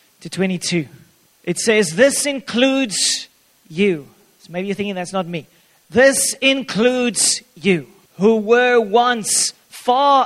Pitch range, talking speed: 200-270 Hz, 115 wpm